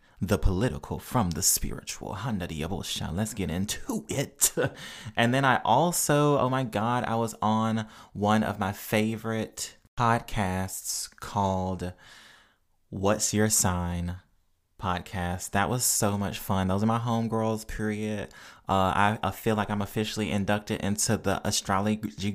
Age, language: 20-39, English